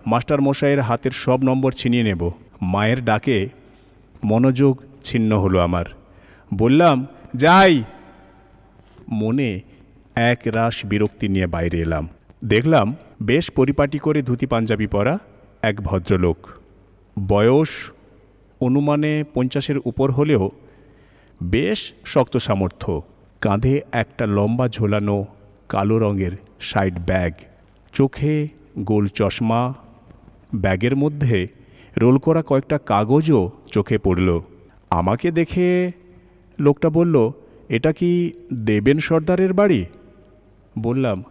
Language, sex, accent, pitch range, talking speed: Bengali, male, native, 100-140 Hz, 100 wpm